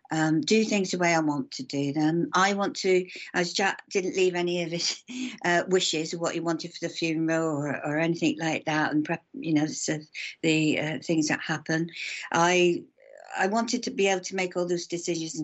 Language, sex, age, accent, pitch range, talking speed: English, female, 60-79, British, 160-210 Hz, 205 wpm